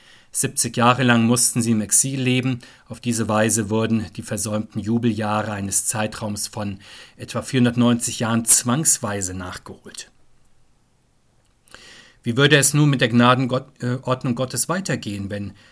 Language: German